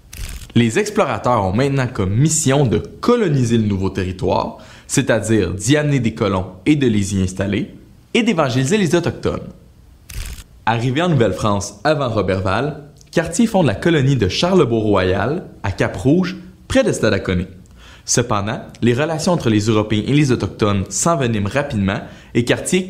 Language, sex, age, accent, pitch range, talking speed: French, male, 20-39, Canadian, 100-140 Hz, 140 wpm